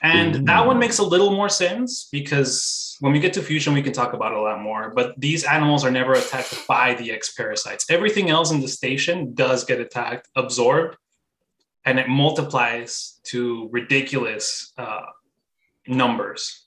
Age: 20-39